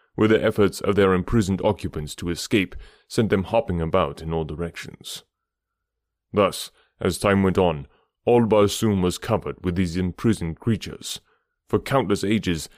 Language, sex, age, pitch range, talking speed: English, male, 30-49, 85-105 Hz, 150 wpm